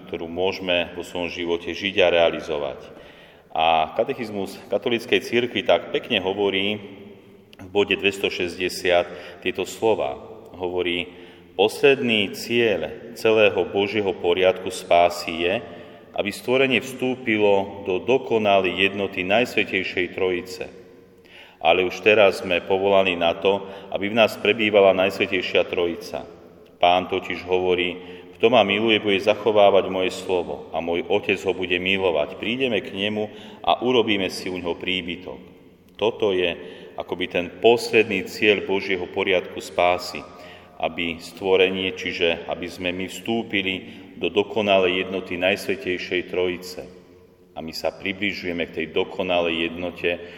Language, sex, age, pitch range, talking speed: Slovak, male, 40-59, 90-100 Hz, 125 wpm